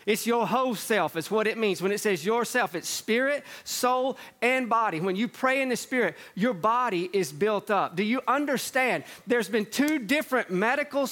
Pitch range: 215-275 Hz